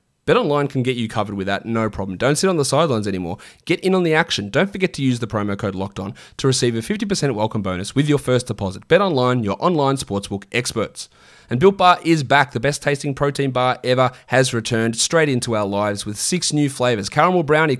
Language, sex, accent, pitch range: English, male, Australian, 110-145 Hz